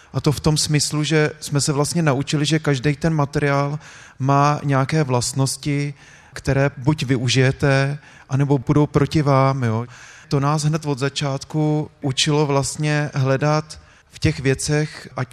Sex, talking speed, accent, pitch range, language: male, 145 wpm, native, 130-145 Hz, Czech